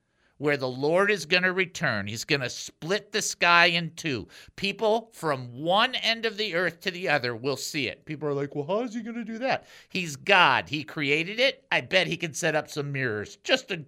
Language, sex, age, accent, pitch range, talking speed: English, male, 50-69, American, 130-215 Hz, 235 wpm